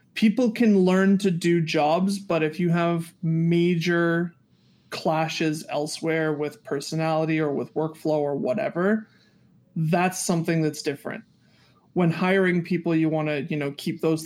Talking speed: 135 wpm